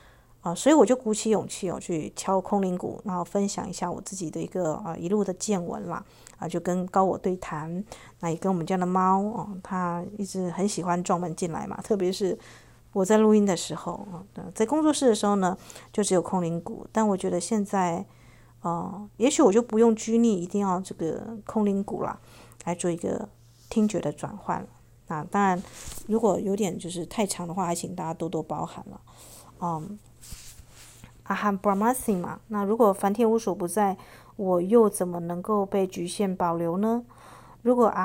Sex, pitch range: female, 175-210 Hz